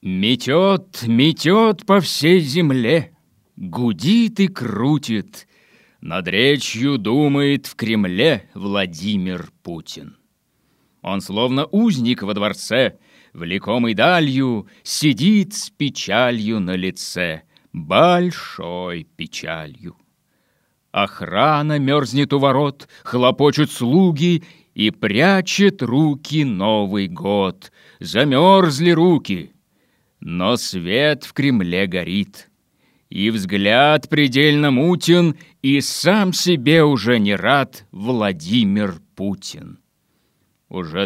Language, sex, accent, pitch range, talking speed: Russian, male, native, 110-170 Hz, 90 wpm